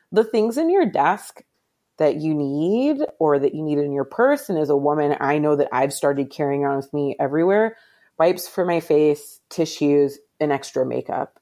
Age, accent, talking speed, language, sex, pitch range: 30-49, American, 195 wpm, English, female, 145-180 Hz